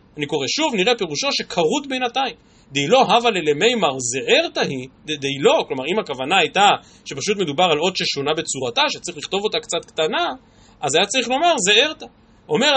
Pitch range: 150-235 Hz